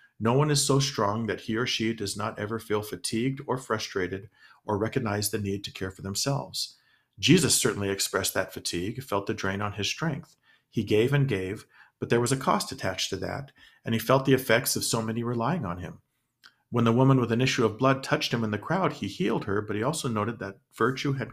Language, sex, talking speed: English, male, 230 wpm